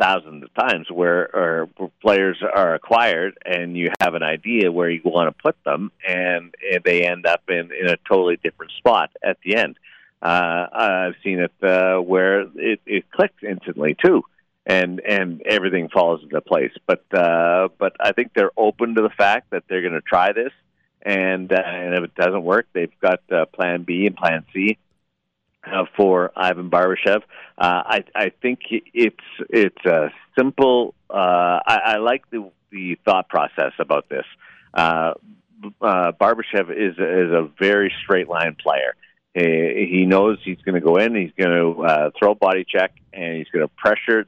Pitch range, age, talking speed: 85-95 Hz, 50-69, 180 wpm